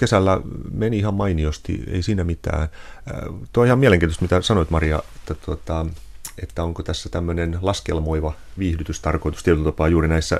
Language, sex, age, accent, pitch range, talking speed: Finnish, male, 30-49, native, 75-90 Hz, 145 wpm